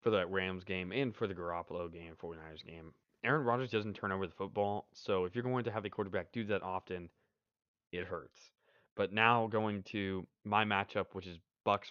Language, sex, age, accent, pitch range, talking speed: English, male, 20-39, American, 90-105 Hz, 200 wpm